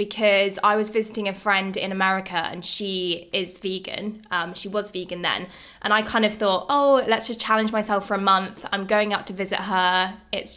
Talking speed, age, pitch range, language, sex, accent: 210 wpm, 20-39, 185-215 Hz, English, female, British